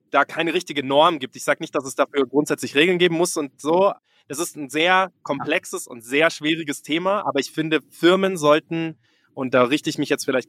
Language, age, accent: German, 20-39, German